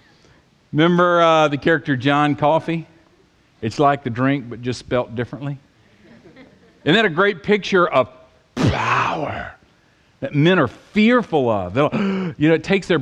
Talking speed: 145 wpm